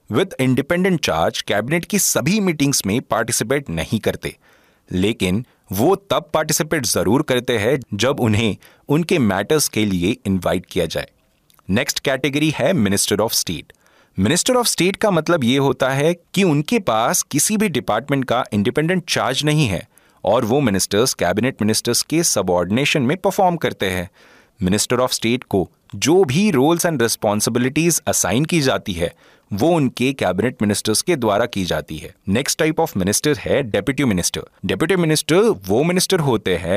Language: Hindi